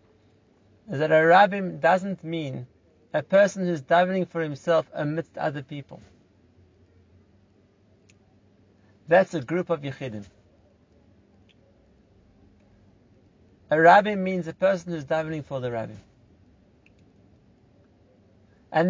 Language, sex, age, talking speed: English, male, 50-69, 100 wpm